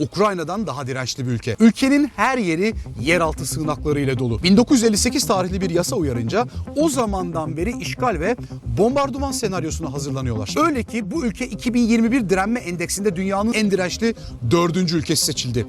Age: 40-59